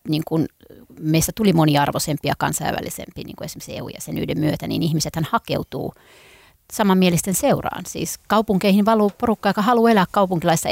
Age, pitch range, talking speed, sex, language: 30-49, 160-200 Hz, 140 wpm, female, Finnish